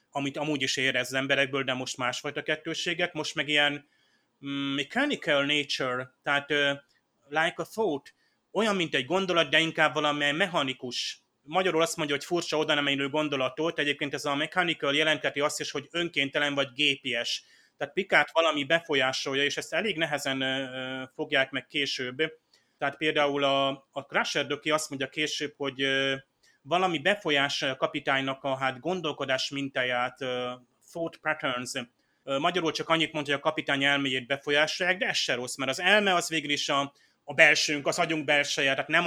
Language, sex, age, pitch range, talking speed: Hungarian, male, 30-49, 135-155 Hz, 165 wpm